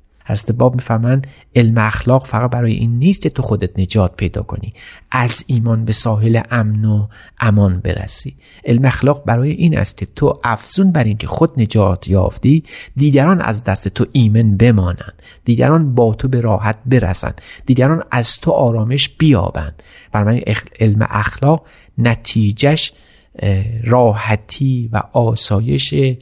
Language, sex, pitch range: Persian, male, 105-130 Hz